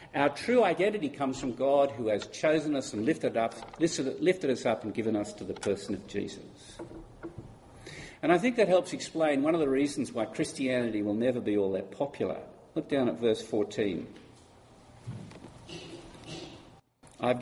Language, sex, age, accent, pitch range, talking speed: English, male, 50-69, Australian, 125-180 Hz, 160 wpm